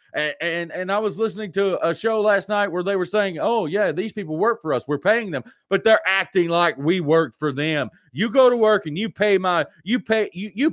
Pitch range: 180-230 Hz